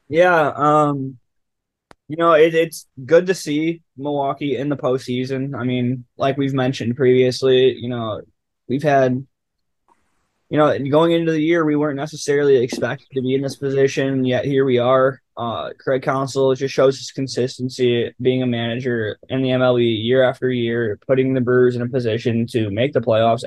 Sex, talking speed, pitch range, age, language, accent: male, 175 wpm, 120-135 Hz, 10-29, English, American